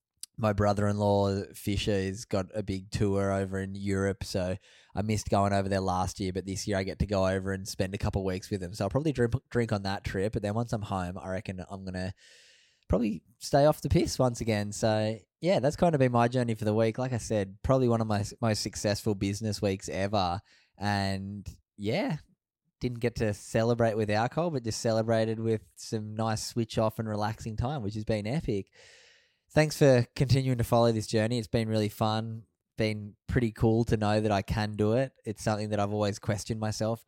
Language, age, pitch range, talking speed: English, 10-29, 100-120 Hz, 215 wpm